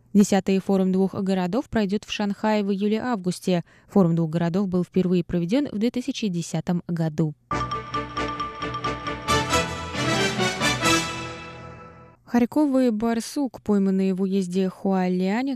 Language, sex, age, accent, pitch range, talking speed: Russian, female, 20-39, native, 175-220 Hz, 95 wpm